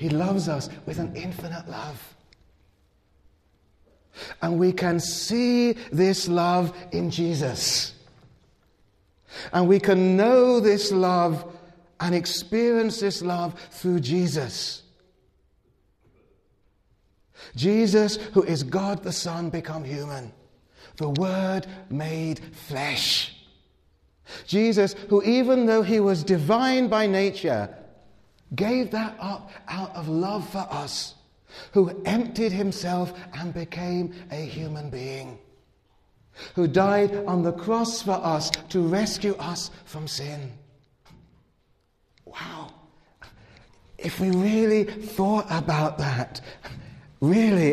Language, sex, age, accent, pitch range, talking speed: English, male, 40-59, British, 155-200 Hz, 105 wpm